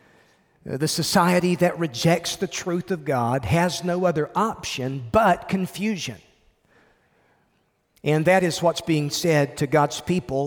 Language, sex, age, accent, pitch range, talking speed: English, male, 40-59, American, 145-180 Hz, 130 wpm